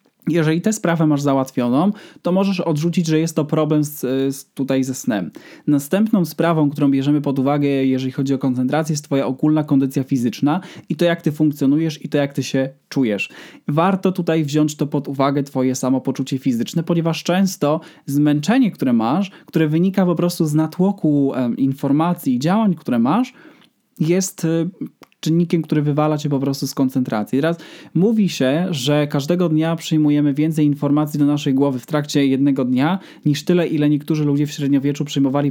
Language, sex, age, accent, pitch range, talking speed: Polish, male, 20-39, native, 140-165 Hz, 165 wpm